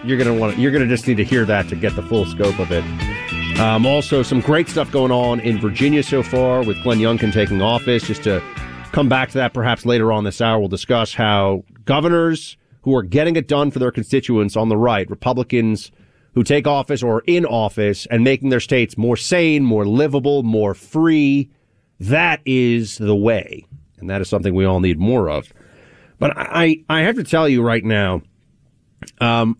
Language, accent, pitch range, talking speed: English, American, 110-150 Hz, 210 wpm